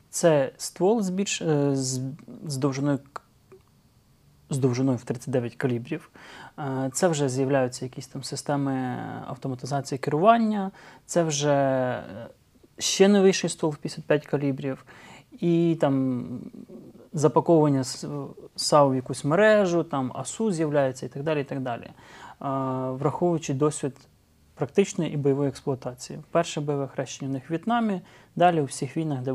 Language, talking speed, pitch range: Ukrainian, 125 wpm, 135-165 Hz